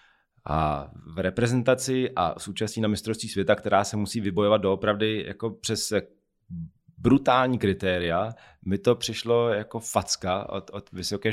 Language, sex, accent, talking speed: Czech, male, native, 130 wpm